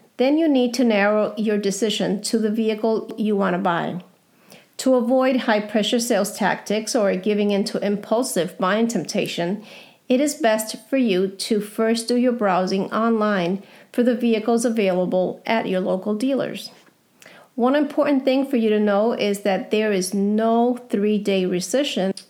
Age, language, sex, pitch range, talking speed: 40-59, English, female, 195-245 Hz, 155 wpm